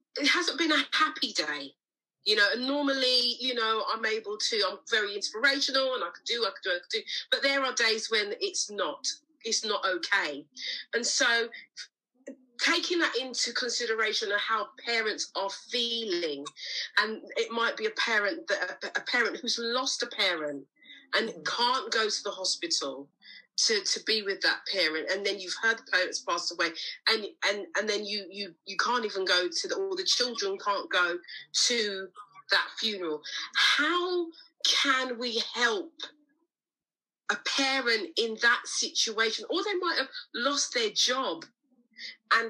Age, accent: 40-59, British